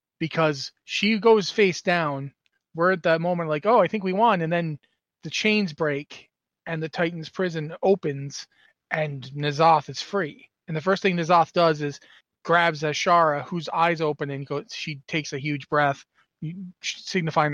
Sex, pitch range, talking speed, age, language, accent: male, 150-175 Hz, 165 wpm, 30-49, English, American